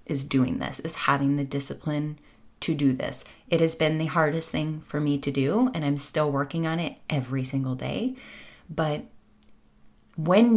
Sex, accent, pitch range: female, American, 140-165 Hz